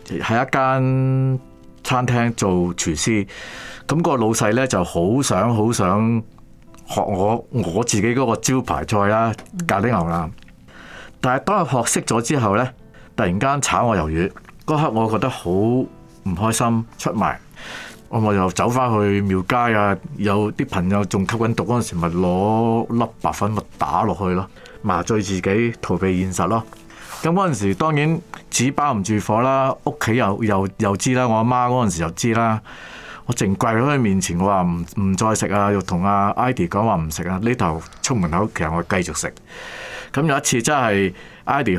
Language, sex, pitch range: Chinese, male, 95-125 Hz